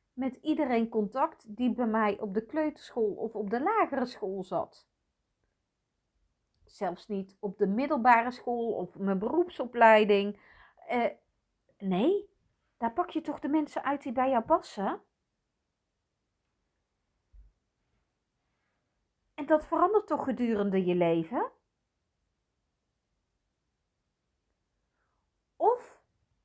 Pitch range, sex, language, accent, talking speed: 210-310 Hz, female, Dutch, Dutch, 100 wpm